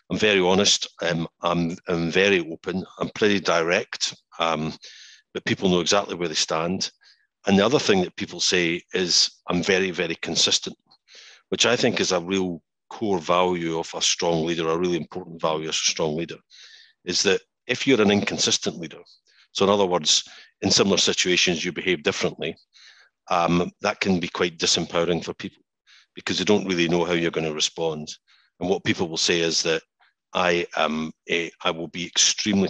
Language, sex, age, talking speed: English, male, 50-69, 185 wpm